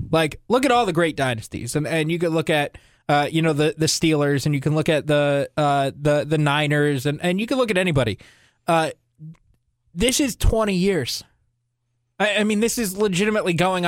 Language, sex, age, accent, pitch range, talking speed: English, male, 20-39, American, 145-200 Hz, 210 wpm